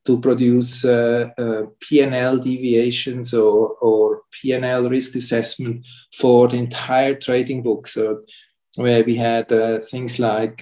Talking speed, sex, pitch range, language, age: 130 wpm, male, 115-130 Hz, English, 50-69